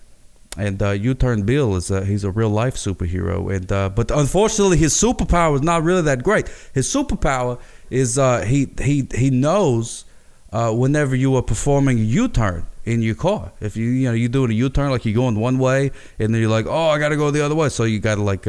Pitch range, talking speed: 105-135 Hz, 220 wpm